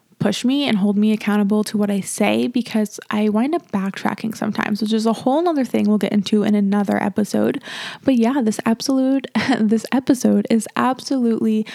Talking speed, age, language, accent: 180 wpm, 20-39, English, American